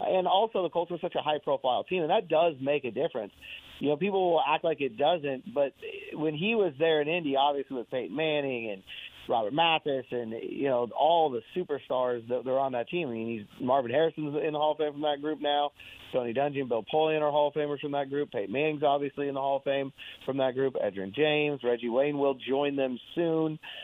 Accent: American